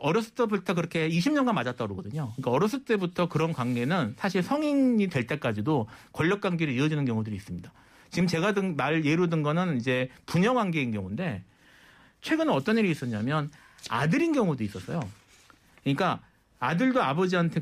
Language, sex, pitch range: Korean, male, 130-190 Hz